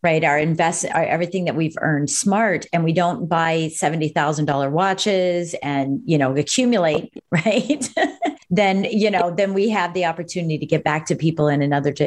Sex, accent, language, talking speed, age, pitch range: female, American, English, 175 wpm, 40-59, 165-205 Hz